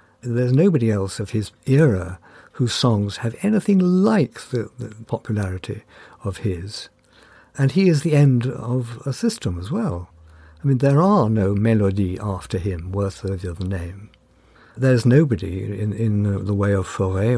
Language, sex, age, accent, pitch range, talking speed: English, male, 60-79, British, 100-125 Hz, 160 wpm